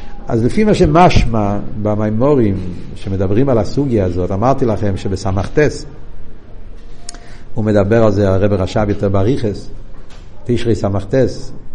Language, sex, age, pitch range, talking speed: Hebrew, male, 60-79, 100-130 Hz, 110 wpm